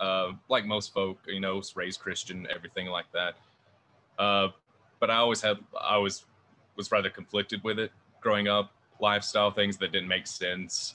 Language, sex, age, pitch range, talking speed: English, male, 20-39, 95-115 Hz, 170 wpm